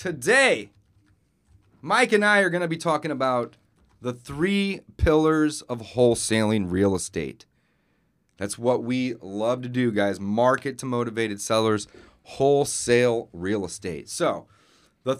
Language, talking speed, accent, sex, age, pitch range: English, 130 wpm, American, male, 30-49, 100-140 Hz